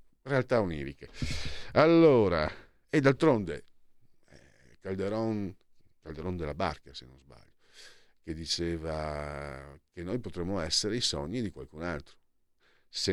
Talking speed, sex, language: 110 wpm, male, Italian